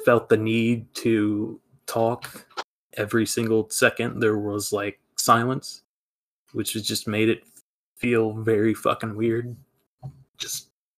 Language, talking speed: English, 120 wpm